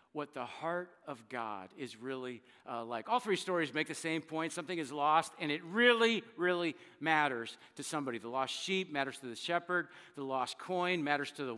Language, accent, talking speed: English, American, 200 wpm